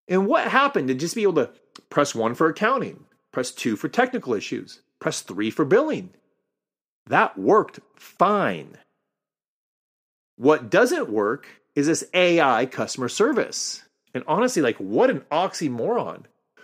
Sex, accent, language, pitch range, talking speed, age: male, American, English, 135-225 Hz, 135 wpm, 30-49